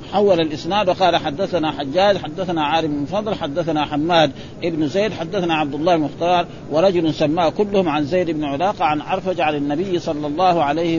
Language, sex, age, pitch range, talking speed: Arabic, male, 60-79, 155-190 Hz, 170 wpm